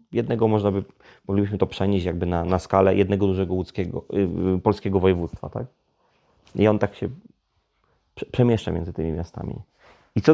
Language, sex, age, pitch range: Polish, male, 30-49, 95-115 Hz